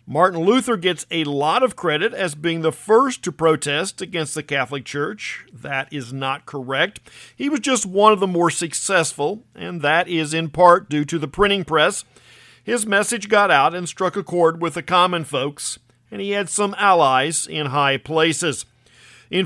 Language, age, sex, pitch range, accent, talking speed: English, 50-69, male, 150-200 Hz, American, 185 wpm